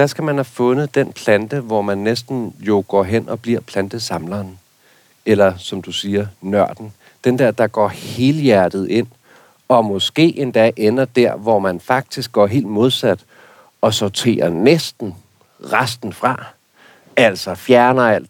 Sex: male